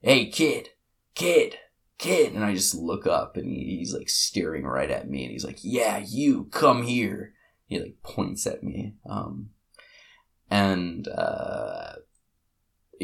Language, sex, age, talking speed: English, male, 20-39, 145 wpm